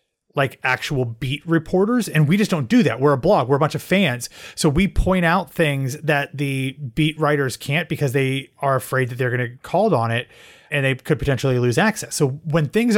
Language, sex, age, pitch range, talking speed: English, male, 30-49, 130-160 Hz, 220 wpm